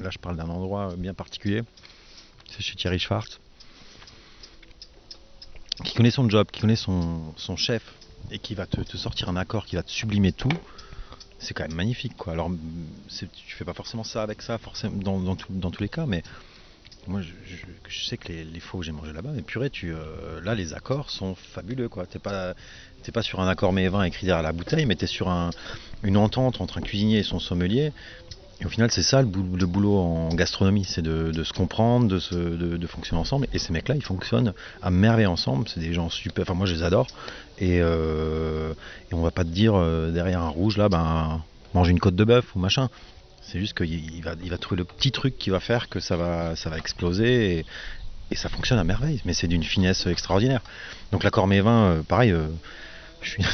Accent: French